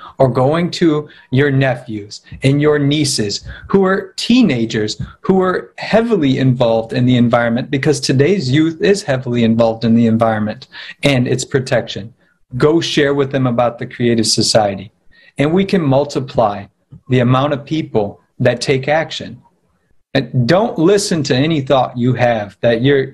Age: 40-59